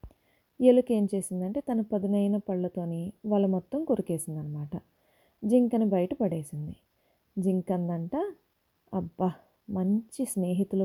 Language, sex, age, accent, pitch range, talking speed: Telugu, female, 20-39, native, 180-245 Hz, 85 wpm